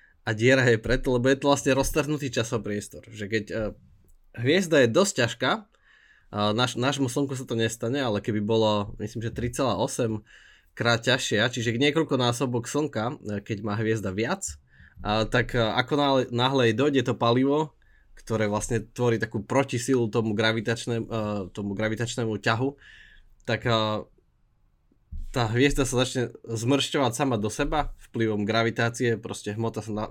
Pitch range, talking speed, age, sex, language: 110-130 Hz, 145 wpm, 20-39, male, Slovak